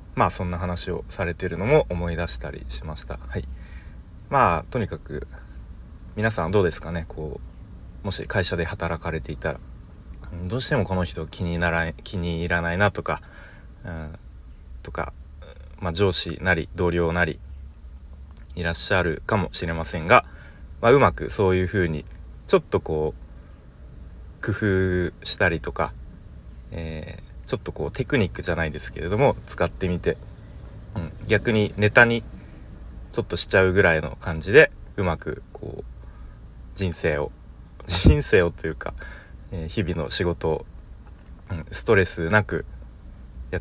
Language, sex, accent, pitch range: Japanese, male, native, 75-90 Hz